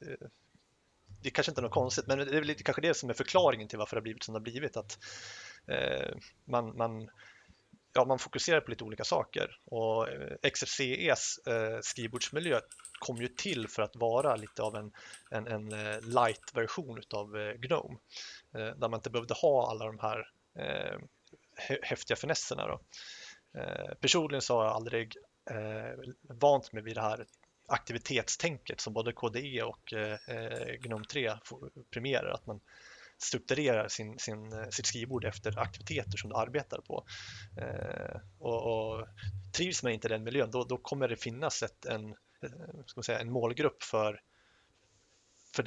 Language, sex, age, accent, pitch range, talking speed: Swedish, male, 30-49, native, 110-130 Hz, 150 wpm